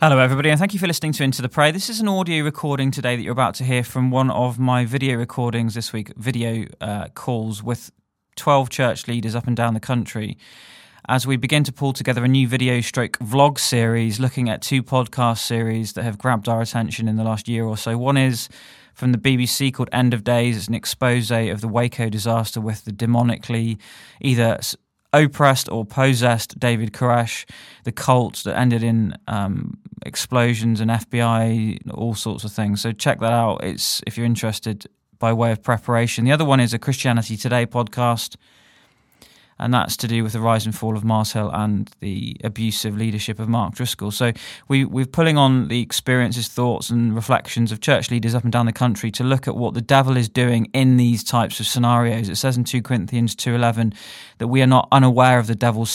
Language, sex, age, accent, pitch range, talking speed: English, male, 20-39, British, 115-130 Hz, 205 wpm